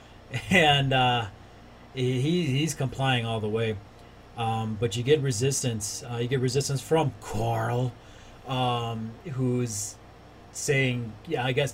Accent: American